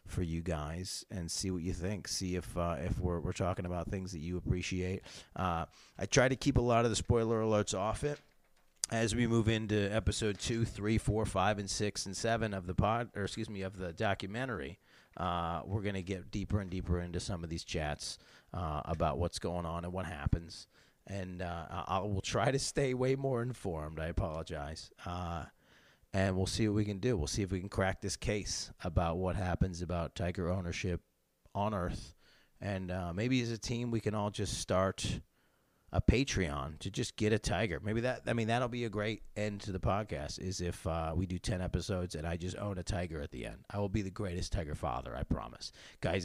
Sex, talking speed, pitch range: male, 220 wpm, 90-110 Hz